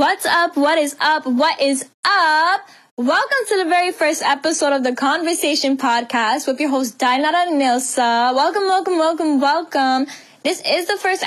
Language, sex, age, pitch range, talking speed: English, female, 10-29, 235-285 Hz, 165 wpm